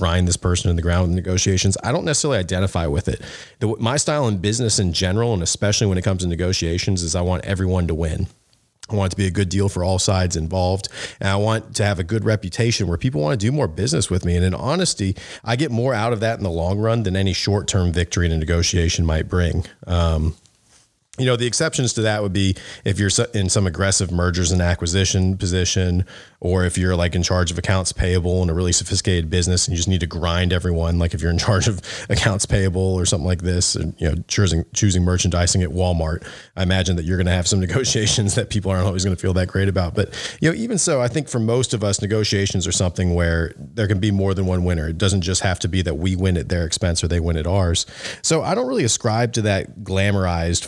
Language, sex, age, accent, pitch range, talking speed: English, male, 30-49, American, 90-105 Hz, 245 wpm